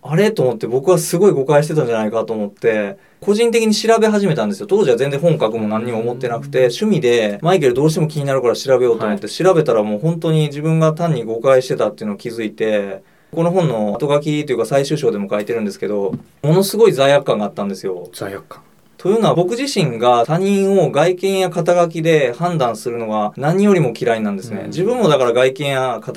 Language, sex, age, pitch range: Japanese, male, 20-39, 120-180 Hz